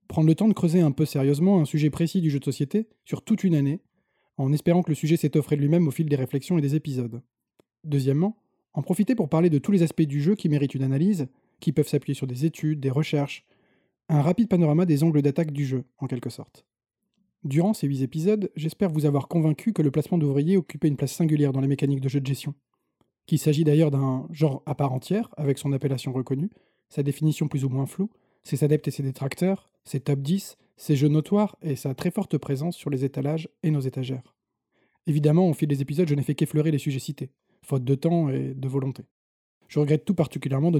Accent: French